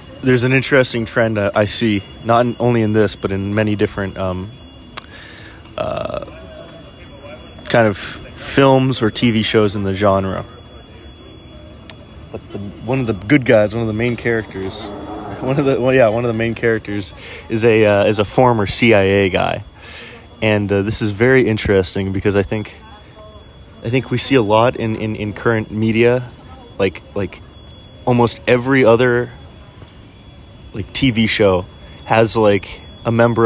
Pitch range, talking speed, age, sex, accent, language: 95-115 Hz, 160 wpm, 20-39, male, American, English